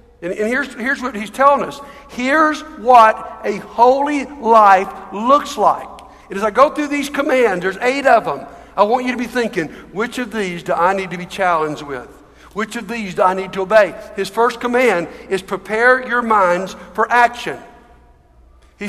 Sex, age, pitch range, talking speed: male, 60-79, 190-250 Hz, 185 wpm